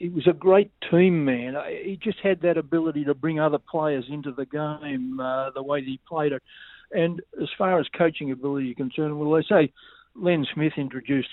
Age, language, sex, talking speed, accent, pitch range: 60-79, English, male, 200 wpm, Australian, 135-160 Hz